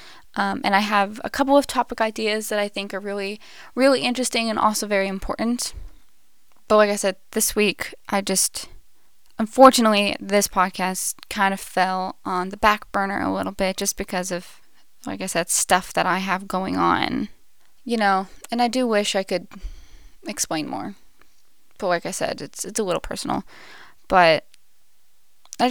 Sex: female